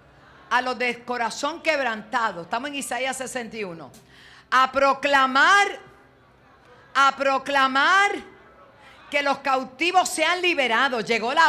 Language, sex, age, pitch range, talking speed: Spanish, female, 50-69, 175-255 Hz, 105 wpm